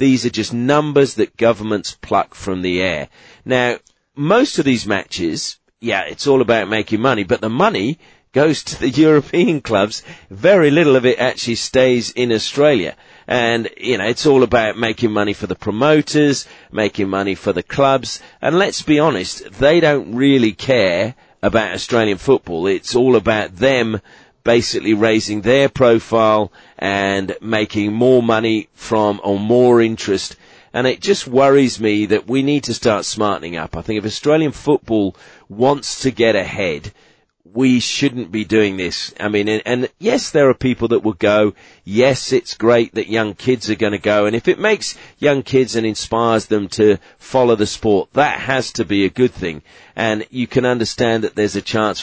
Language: English